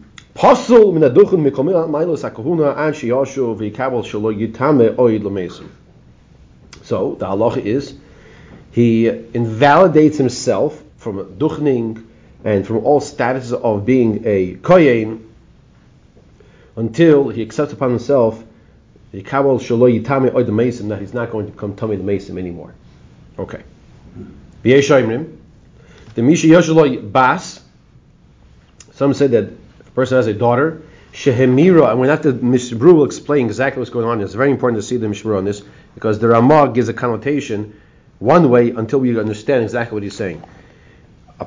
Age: 40-59